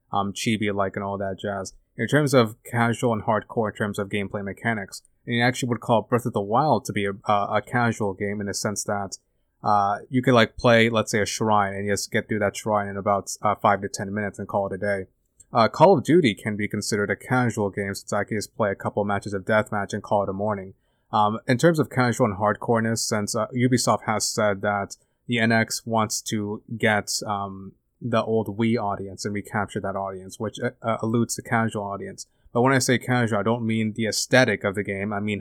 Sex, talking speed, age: male, 235 wpm, 30-49